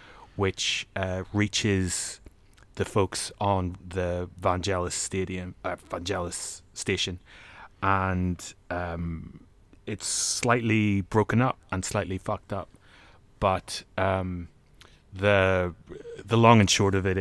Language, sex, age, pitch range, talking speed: English, male, 30-49, 90-105 Hz, 110 wpm